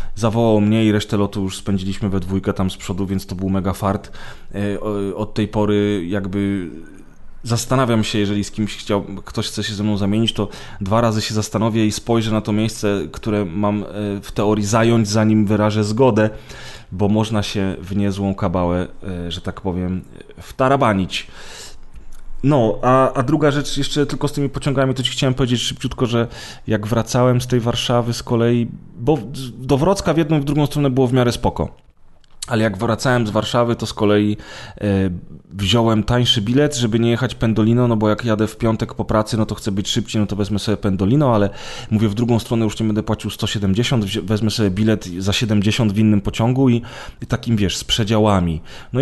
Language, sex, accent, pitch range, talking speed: Polish, male, native, 100-120 Hz, 190 wpm